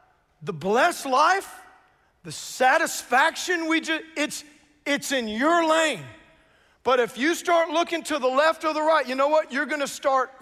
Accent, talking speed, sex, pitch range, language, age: American, 175 wpm, male, 230-320 Hz, English, 40-59